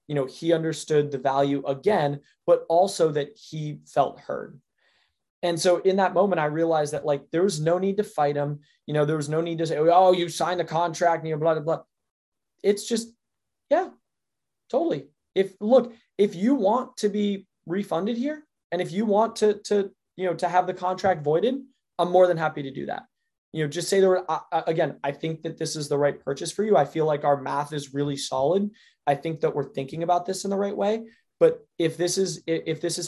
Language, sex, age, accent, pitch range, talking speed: English, male, 20-39, American, 150-190 Hz, 225 wpm